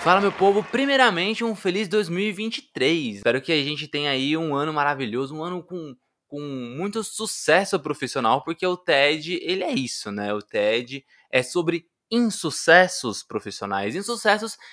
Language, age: Portuguese, 20-39